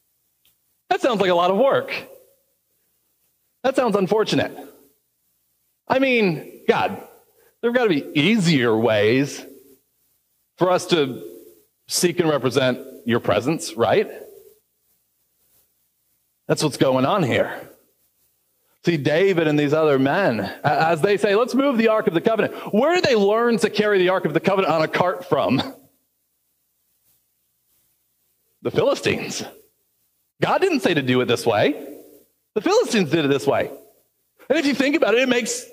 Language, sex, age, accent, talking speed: English, male, 40-59, American, 150 wpm